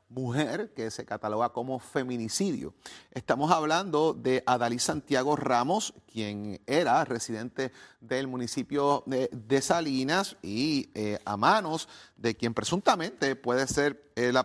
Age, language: 30-49, Spanish